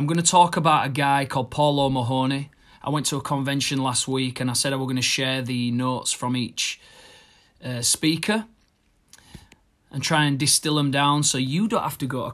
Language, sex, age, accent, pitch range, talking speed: English, male, 30-49, British, 120-155 Hz, 215 wpm